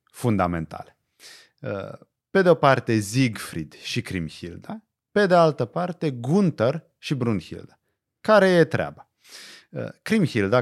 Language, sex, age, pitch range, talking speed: Romanian, male, 30-49, 100-165 Hz, 105 wpm